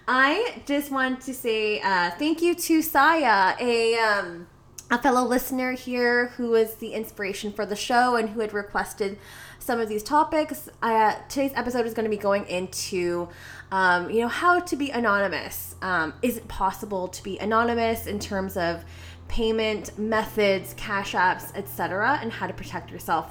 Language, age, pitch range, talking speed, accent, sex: English, 20-39, 195-250 Hz, 170 wpm, American, female